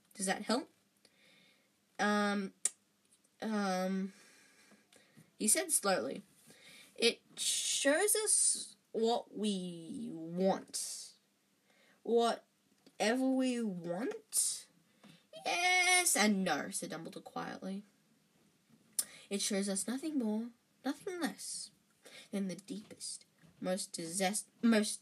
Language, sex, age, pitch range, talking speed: English, female, 20-39, 195-245 Hz, 85 wpm